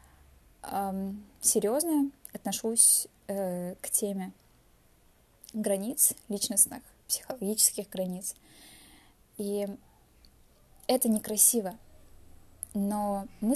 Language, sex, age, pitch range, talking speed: Russian, female, 20-39, 185-220 Hz, 60 wpm